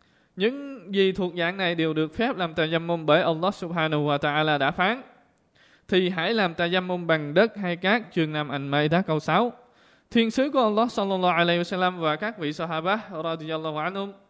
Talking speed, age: 195 wpm, 20-39